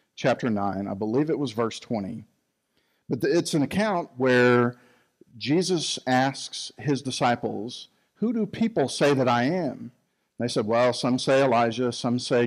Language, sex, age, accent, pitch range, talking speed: English, male, 50-69, American, 120-160 Hz, 155 wpm